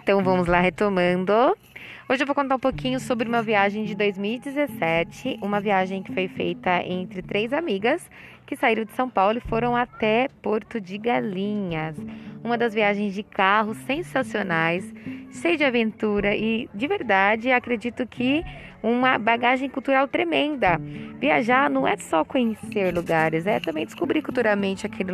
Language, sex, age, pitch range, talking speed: Portuguese, female, 20-39, 190-255 Hz, 150 wpm